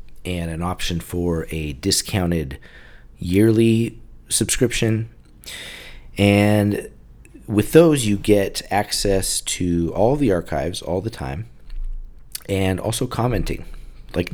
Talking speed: 105 wpm